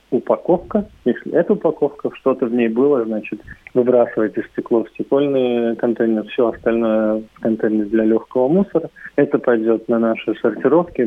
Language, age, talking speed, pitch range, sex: Russian, 20-39, 140 wpm, 110-135 Hz, male